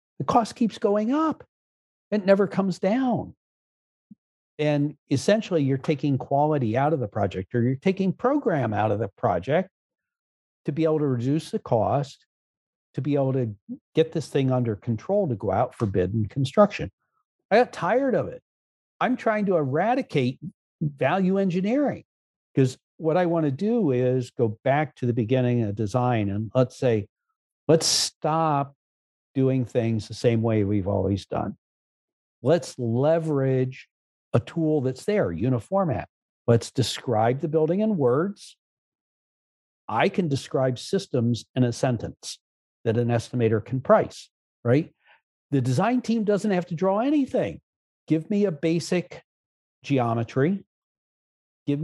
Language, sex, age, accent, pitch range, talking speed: English, male, 60-79, American, 120-185 Hz, 145 wpm